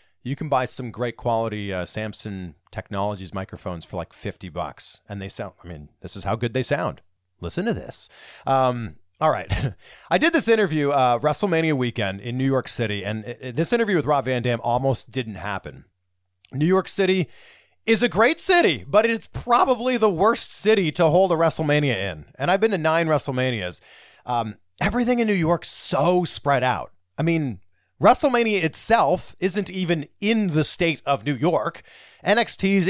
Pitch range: 105-170 Hz